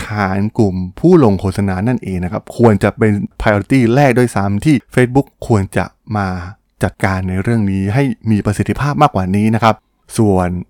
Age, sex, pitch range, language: 20-39, male, 95-120 Hz, Thai